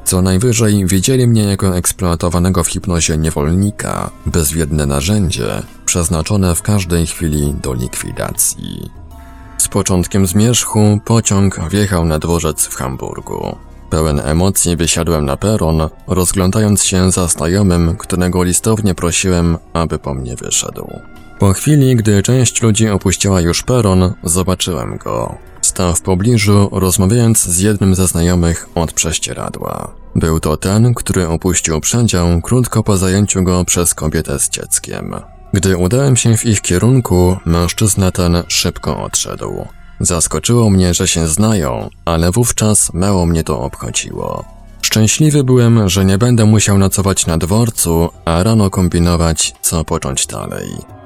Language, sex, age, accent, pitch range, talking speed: Polish, male, 20-39, native, 85-105 Hz, 130 wpm